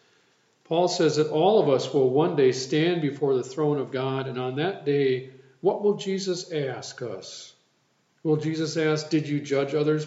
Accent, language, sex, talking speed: American, English, male, 185 wpm